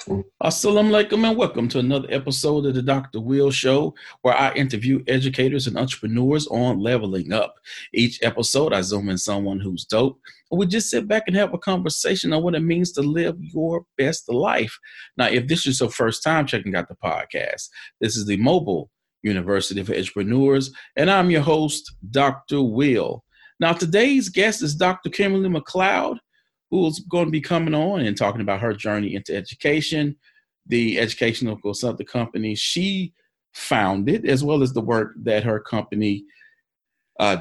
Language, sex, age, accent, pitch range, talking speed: English, male, 40-59, American, 115-175 Hz, 170 wpm